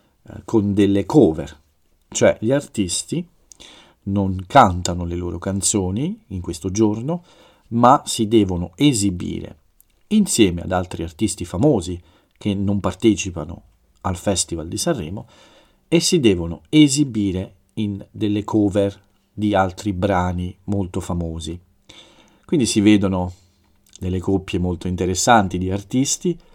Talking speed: 115 wpm